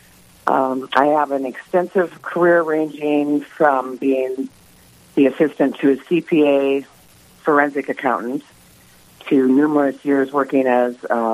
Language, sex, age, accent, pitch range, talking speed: English, female, 50-69, American, 115-150 Hz, 115 wpm